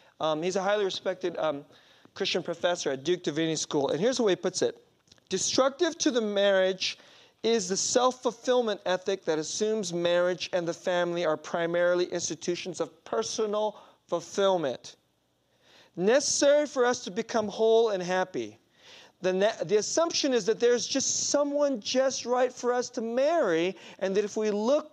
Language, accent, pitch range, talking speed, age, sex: English, American, 175-250 Hz, 160 wpm, 40-59, male